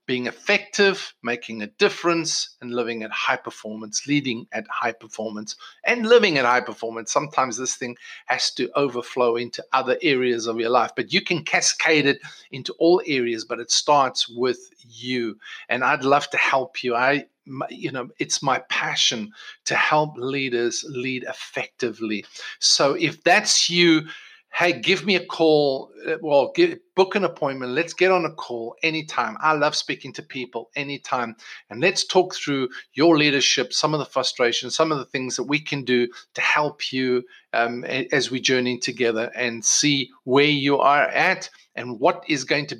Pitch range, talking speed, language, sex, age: 120-170 Hz, 170 wpm, English, male, 50-69